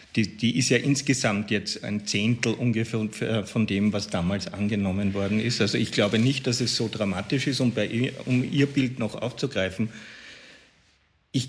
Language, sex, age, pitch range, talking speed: German, male, 50-69, 105-120 Hz, 170 wpm